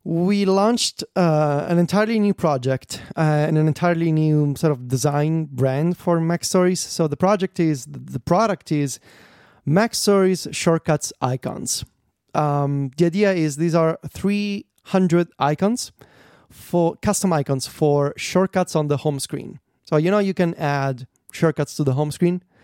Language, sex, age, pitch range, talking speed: English, male, 30-49, 135-175 Hz, 155 wpm